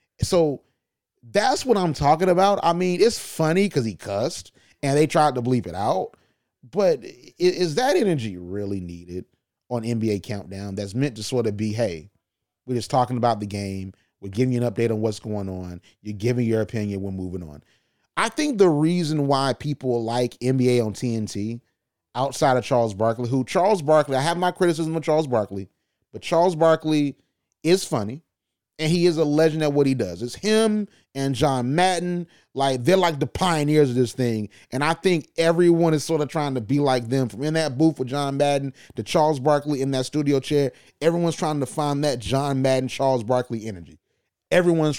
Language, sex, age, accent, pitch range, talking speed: English, male, 30-49, American, 115-160 Hz, 195 wpm